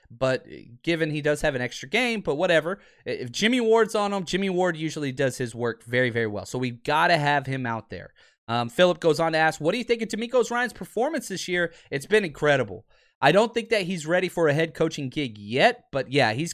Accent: American